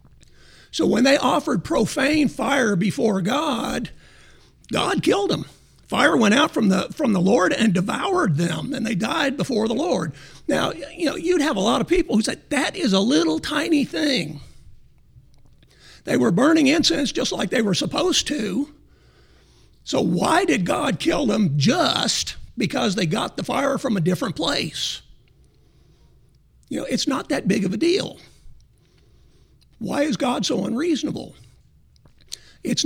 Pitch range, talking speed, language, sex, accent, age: 200-290 Hz, 155 wpm, English, male, American, 50-69